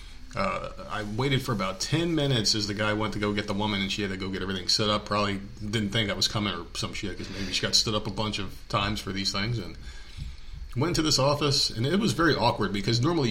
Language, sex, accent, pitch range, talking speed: English, male, American, 100-115 Hz, 265 wpm